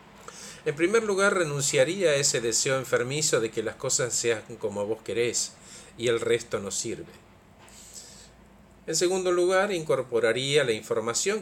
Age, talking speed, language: 50-69, 140 wpm, Spanish